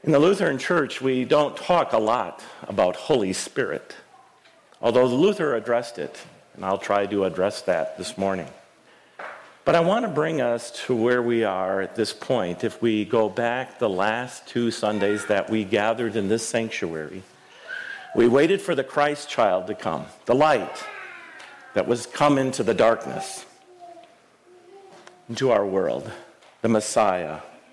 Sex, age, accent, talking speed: male, 50-69, American, 155 wpm